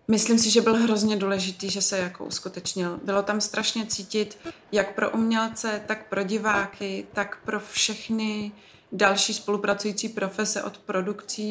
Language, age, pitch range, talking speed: Czech, 20-39, 195-220 Hz, 145 wpm